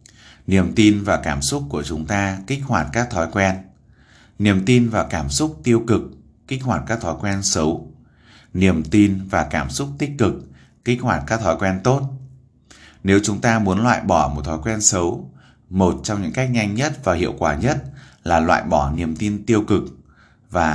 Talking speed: 195 wpm